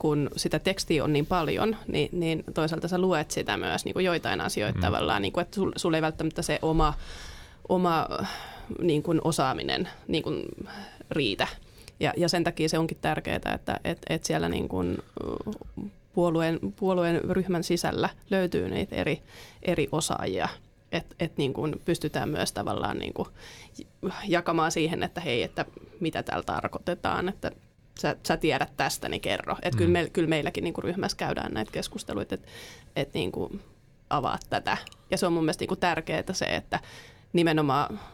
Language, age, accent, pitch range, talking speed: Finnish, 20-39, native, 155-185 Hz, 160 wpm